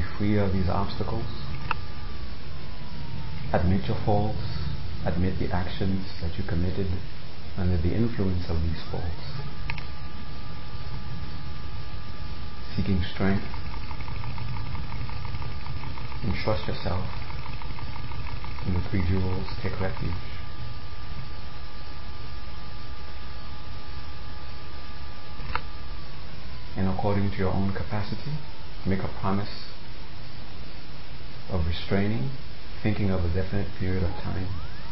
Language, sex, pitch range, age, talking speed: English, male, 85-105 Hz, 40-59, 85 wpm